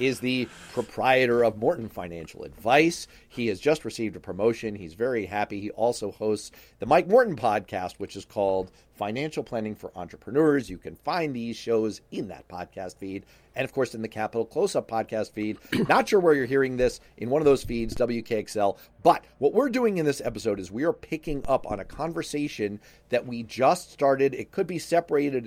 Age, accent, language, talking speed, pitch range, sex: 40-59, American, English, 195 wpm, 110-150 Hz, male